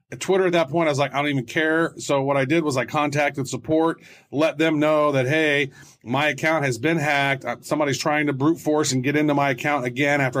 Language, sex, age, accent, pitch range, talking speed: English, male, 40-59, American, 125-150 Hz, 235 wpm